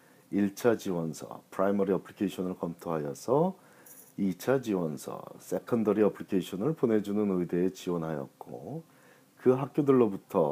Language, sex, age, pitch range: Korean, male, 40-59, 85-125 Hz